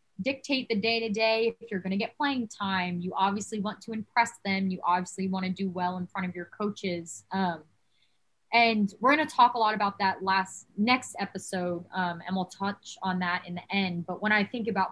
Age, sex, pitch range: 20-39, female, 180-215 Hz